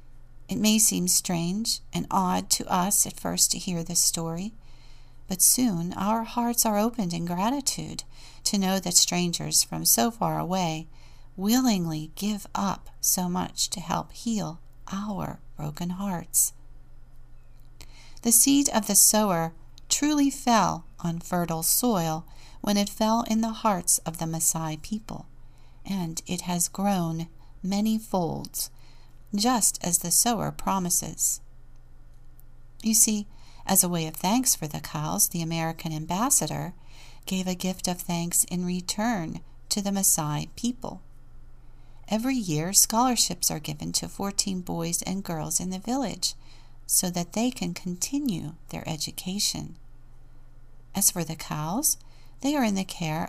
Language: English